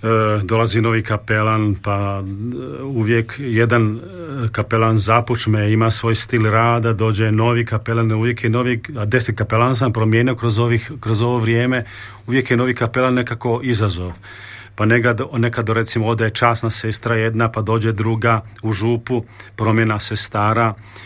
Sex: male